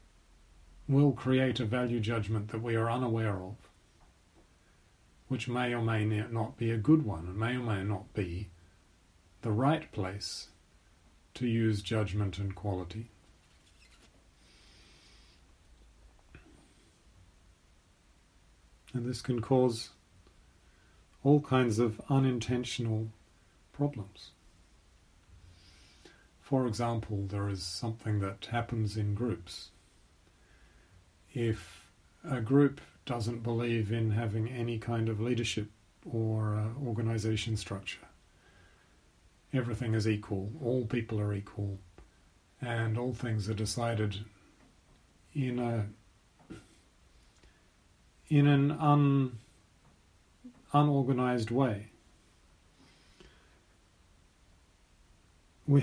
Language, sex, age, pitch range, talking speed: English, male, 40-59, 90-120 Hz, 90 wpm